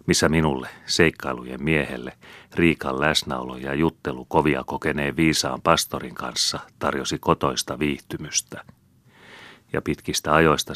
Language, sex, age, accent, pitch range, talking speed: Finnish, male, 40-59, native, 65-80 Hz, 105 wpm